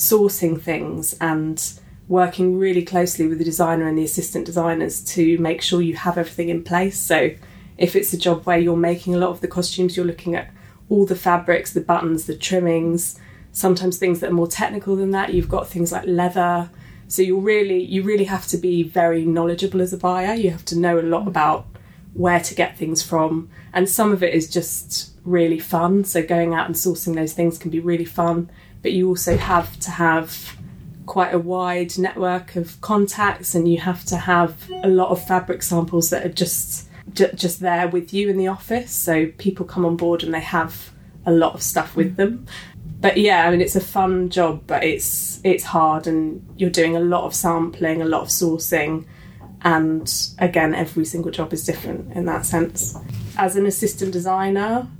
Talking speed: 200 wpm